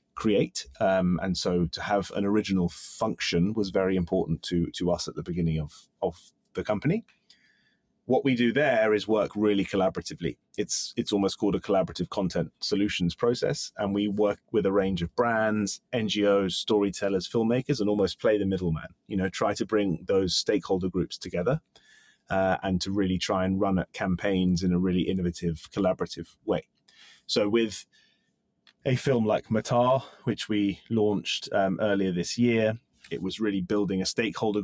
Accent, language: British, English